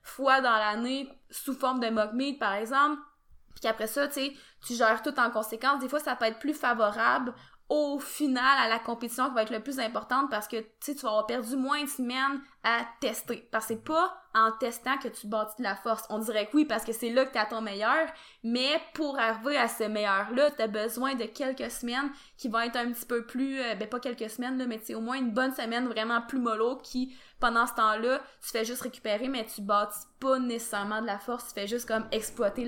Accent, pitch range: Canadian, 220-265 Hz